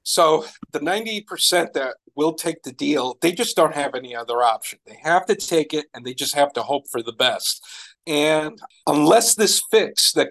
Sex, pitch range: male, 135-170 Hz